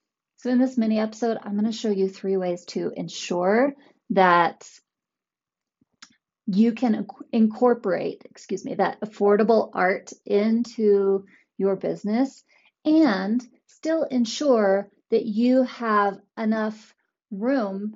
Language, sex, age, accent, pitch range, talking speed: English, female, 30-49, American, 195-245 Hz, 115 wpm